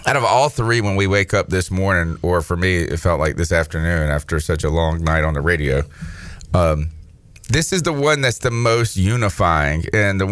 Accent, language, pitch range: American, English, 90-120 Hz